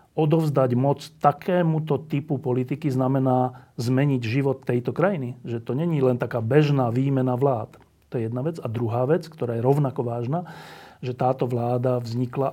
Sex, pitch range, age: male, 125-150 Hz, 40-59